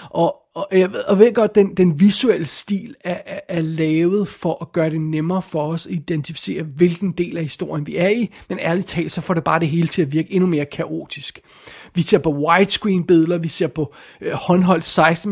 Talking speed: 215 wpm